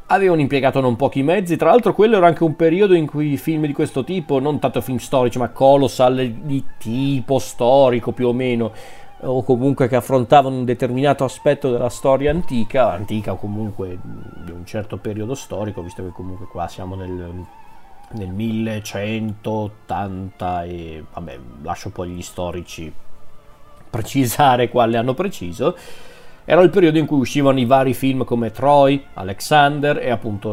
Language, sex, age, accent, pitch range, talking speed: Italian, male, 30-49, native, 95-135 Hz, 155 wpm